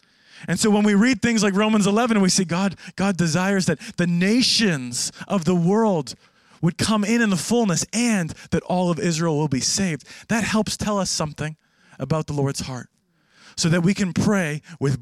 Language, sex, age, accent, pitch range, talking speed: English, male, 30-49, American, 175-230 Hz, 195 wpm